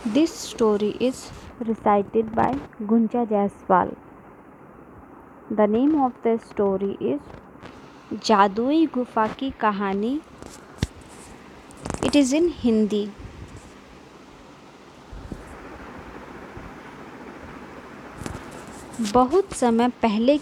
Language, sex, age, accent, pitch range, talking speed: Hindi, female, 20-39, native, 215-275 Hz, 70 wpm